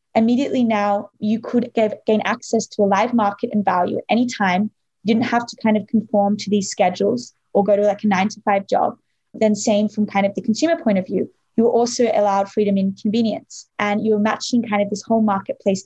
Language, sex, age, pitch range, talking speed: English, female, 20-39, 200-225 Hz, 225 wpm